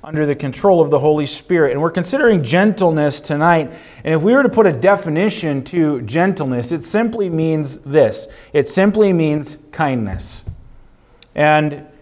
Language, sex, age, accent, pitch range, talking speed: English, male, 30-49, American, 150-190 Hz, 155 wpm